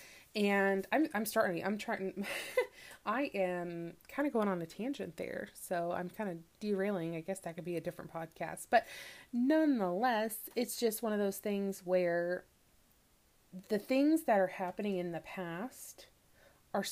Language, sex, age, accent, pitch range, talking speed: English, female, 20-39, American, 175-215 Hz, 165 wpm